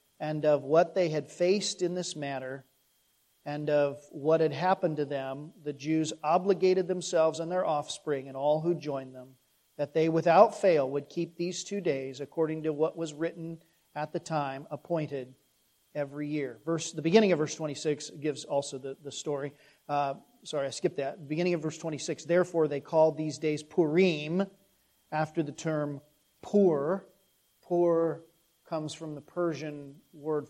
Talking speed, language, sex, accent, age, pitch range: 165 wpm, English, male, American, 40-59, 145-170 Hz